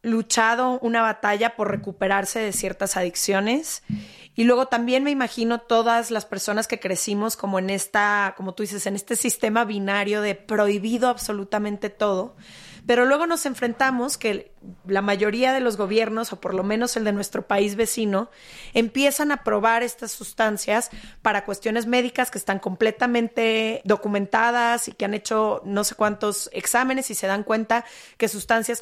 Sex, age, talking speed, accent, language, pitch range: female, 30-49, 160 wpm, Mexican, Spanish, 205-245 Hz